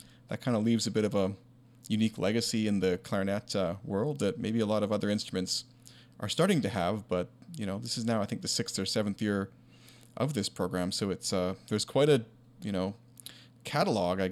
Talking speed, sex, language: 220 wpm, male, English